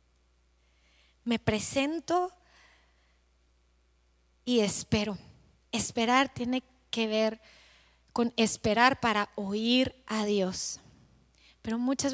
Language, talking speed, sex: Spanish, 80 wpm, female